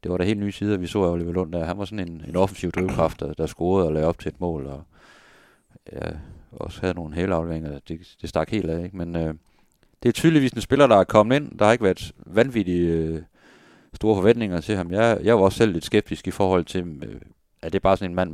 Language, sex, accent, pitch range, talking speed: Danish, male, native, 85-100 Hz, 255 wpm